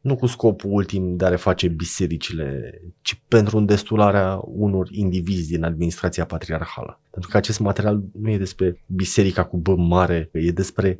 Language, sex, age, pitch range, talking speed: Romanian, male, 20-39, 95-120 Hz, 160 wpm